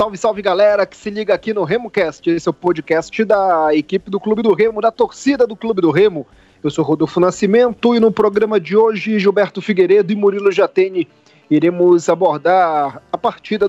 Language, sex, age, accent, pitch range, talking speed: Portuguese, male, 40-59, Brazilian, 165-205 Hz, 190 wpm